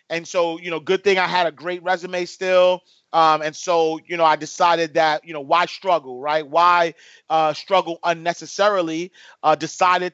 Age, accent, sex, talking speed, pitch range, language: 30-49, American, male, 185 wpm, 160-180 Hz, English